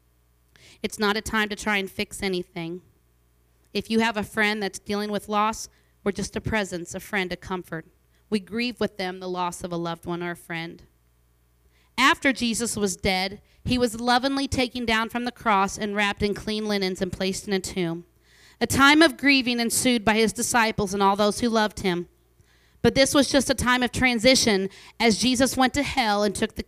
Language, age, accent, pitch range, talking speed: English, 40-59, American, 185-245 Hz, 205 wpm